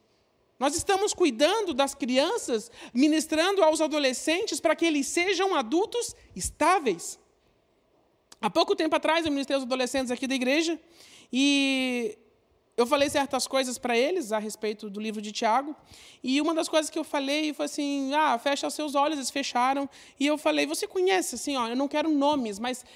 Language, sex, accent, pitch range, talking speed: Portuguese, male, Brazilian, 230-310 Hz, 170 wpm